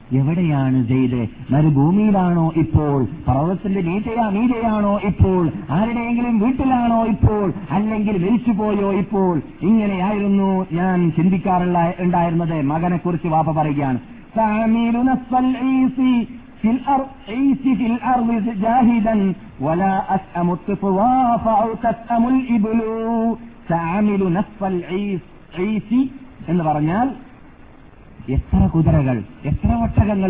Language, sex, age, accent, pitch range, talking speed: Malayalam, male, 50-69, native, 150-225 Hz, 55 wpm